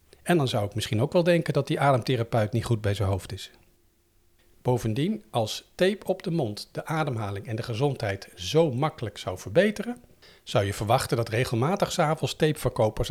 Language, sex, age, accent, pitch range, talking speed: Dutch, male, 50-69, Dutch, 105-145 Hz, 180 wpm